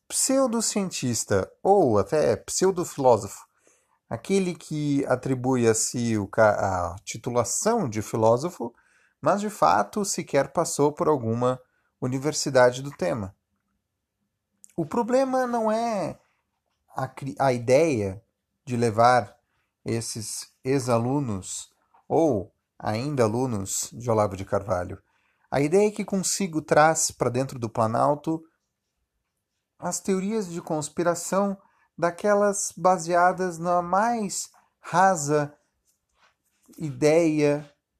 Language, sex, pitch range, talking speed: Portuguese, male, 120-180 Hz, 100 wpm